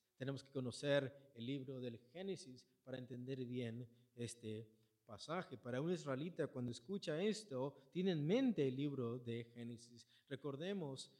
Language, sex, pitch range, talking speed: Spanish, male, 120-160 Hz, 140 wpm